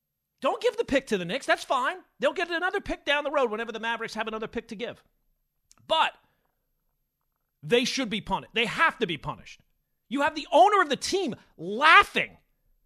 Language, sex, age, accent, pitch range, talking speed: English, male, 40-59, American, 170-235 Hz, 195 wpm